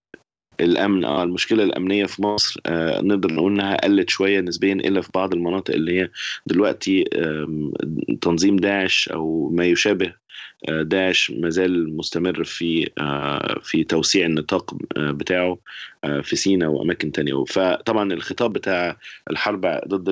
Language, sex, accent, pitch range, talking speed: English, male, Lebanese, 80-95 Hz, 120 wpm